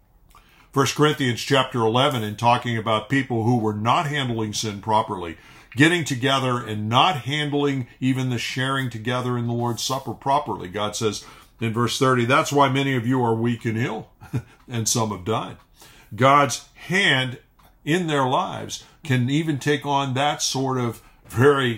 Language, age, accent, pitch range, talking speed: English, 50-69, American, 115-145 Hz, 165 wpm